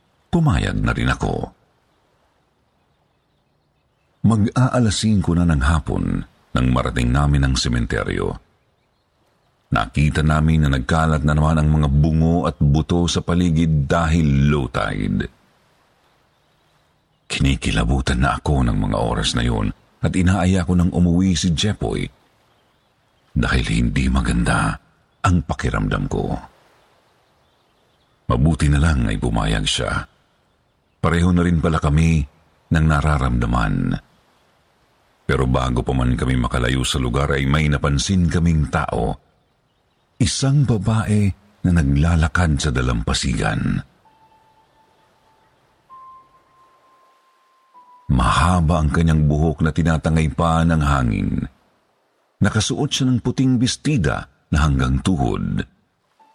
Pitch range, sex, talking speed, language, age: 75-95 Hz, male, 105 wpm, Filipino, 50-69